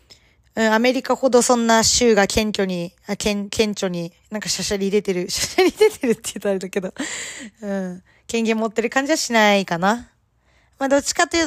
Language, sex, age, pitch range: Japanese, female, 20-39, 190-235 Hz